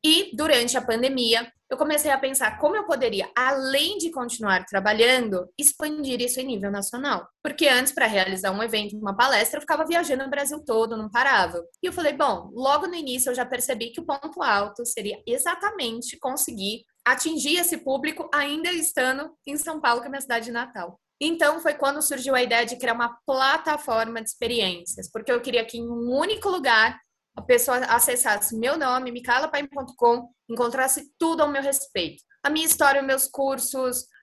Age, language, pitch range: 20-39, Portuguese, 220-280 Hz